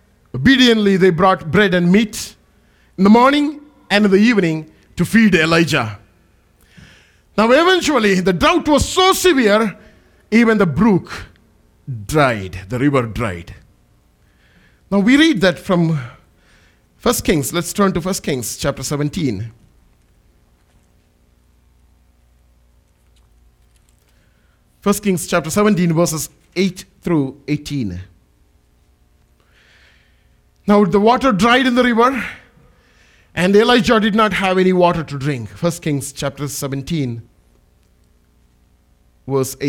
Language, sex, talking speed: English, male, 110 wpm